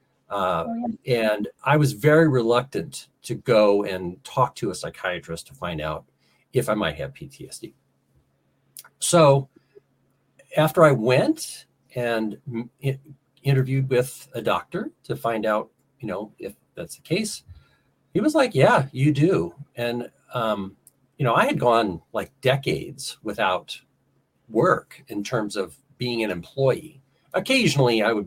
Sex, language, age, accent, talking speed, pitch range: male, English, 40-59, American, 140 wpm, 110-155 Hz